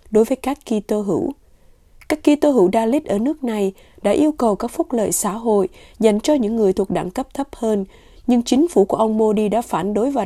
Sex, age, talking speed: female, 20-39, 235 wpm